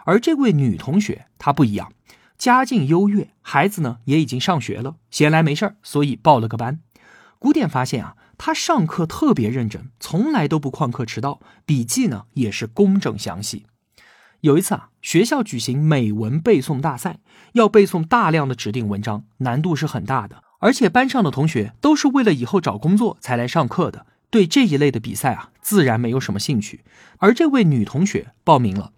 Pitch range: 120-190 Hz